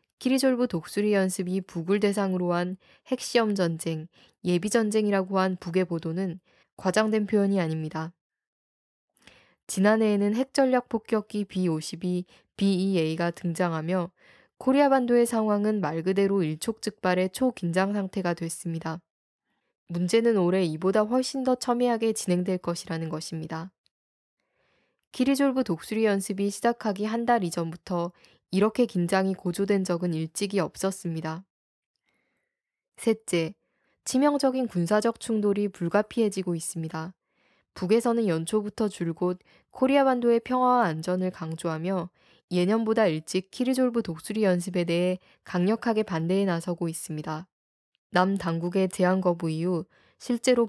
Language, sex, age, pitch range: Korean, female, 10-29, 175-220 Hz